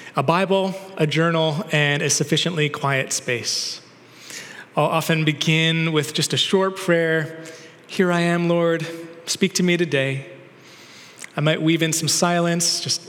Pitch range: 155-185 Hz